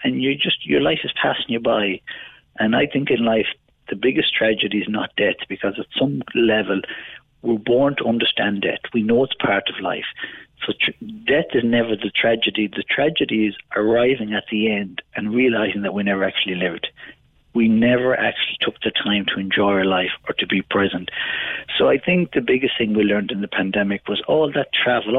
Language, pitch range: English, 100-120 Hz